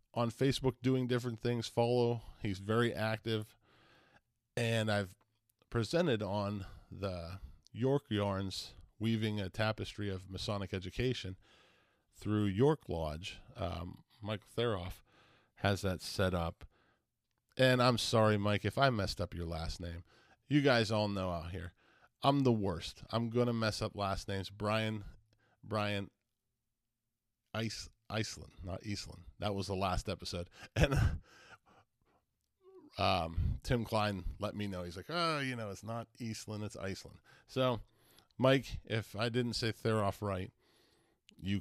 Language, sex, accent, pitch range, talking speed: English, male, American, 95-120 Hz, 140 wpm